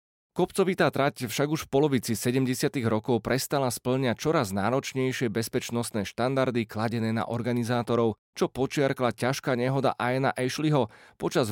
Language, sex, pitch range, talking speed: Slovak, male, 115-145 Hz, 125 wpm